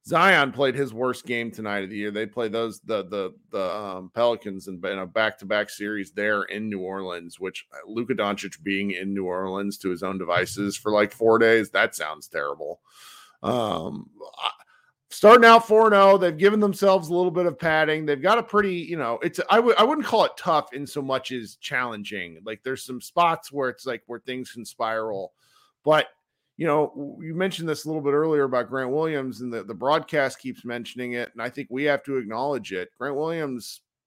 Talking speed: 205 wpm